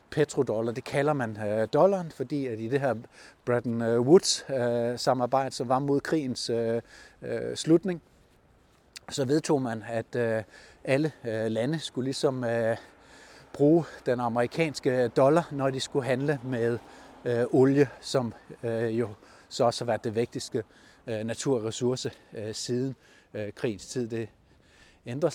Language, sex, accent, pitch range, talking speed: Danish, male, native, 115-140 Hz, 120 wpm